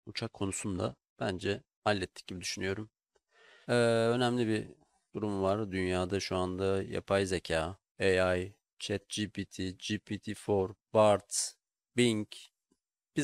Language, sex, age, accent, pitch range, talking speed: Turkish, male, 40-59, native, 90-100 Hz, 105 wpm